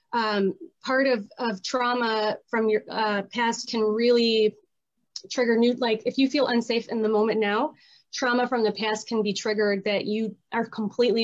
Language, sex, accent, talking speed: English, female, American, 175 wpm